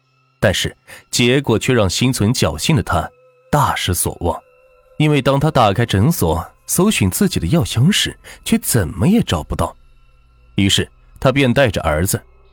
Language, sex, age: Chinese, male, 30-49